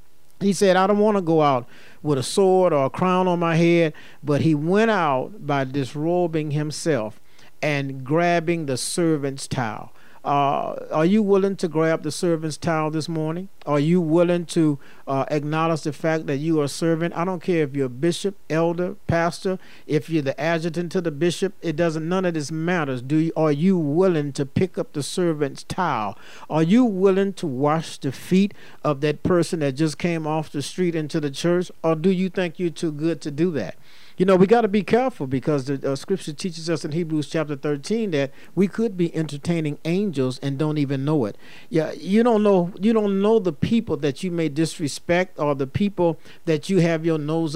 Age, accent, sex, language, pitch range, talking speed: 50-69, American, male, English, 150-175 Hz, 205 wpm